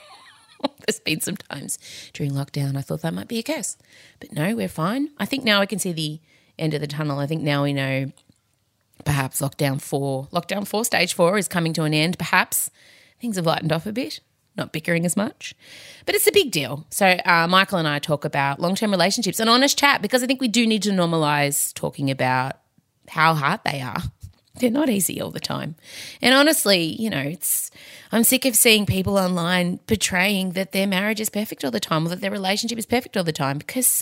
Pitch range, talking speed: 145-210 Hz, 215 wpm